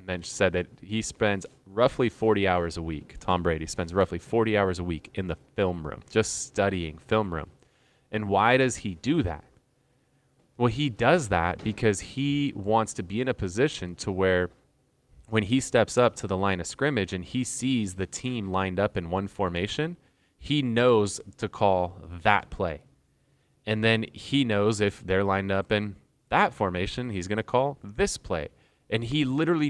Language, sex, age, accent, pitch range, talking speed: English, male, 20-39, American, 95-120 Hz, 180 wpm